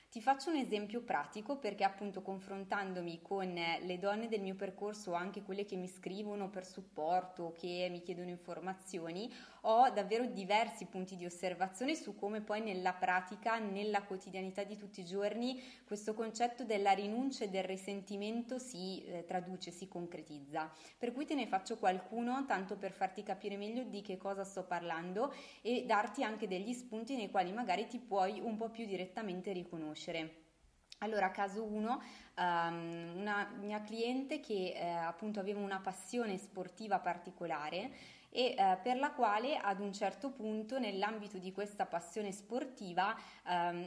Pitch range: 185-225 Hz